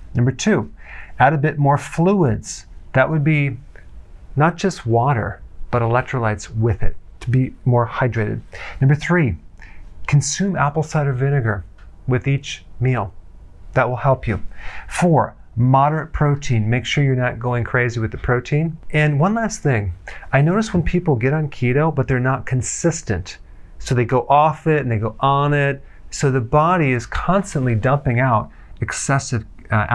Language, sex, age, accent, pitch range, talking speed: English, male, 40-59, American, 115-145 Hz, 160 wpm